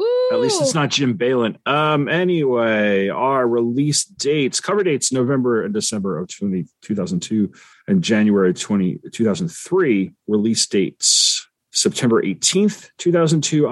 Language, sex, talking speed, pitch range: English, male, 125 wpm, 110-145 Hz